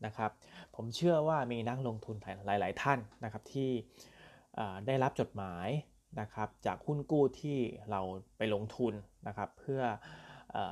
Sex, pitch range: male, 105-135 Hz